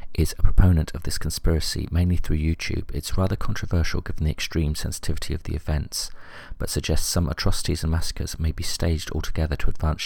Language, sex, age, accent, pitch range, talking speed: English, male, 40-59, British, 80-90 Hz, 185 wpm